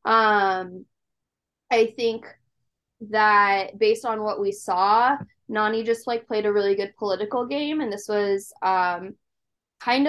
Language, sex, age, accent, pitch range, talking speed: English, female, 10-29, American, 210-245 Hz, 135 wpm